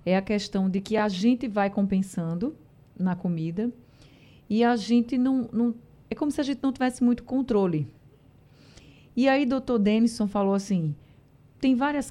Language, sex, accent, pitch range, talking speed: Portuguese, female, Brazilian, 165-225 Hz, 170 wpm